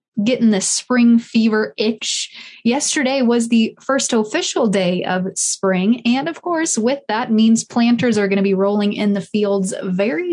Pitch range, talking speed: 205-245 Hz, 170 wpm